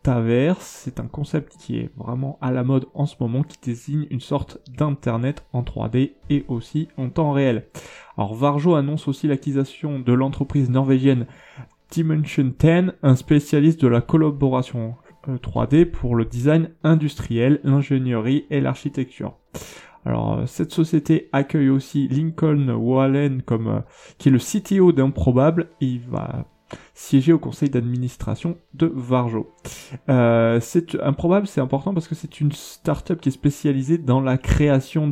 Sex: male